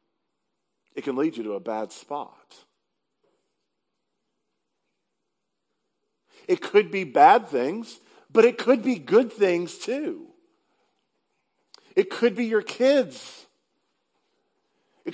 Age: 50-69